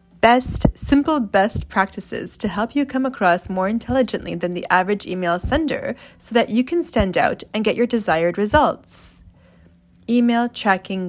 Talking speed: 155 wpm